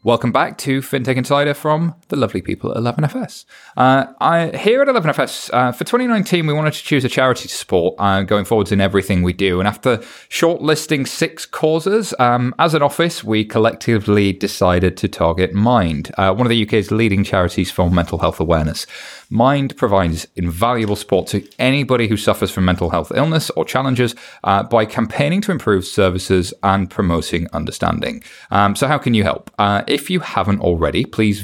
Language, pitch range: English, 95-140 Hz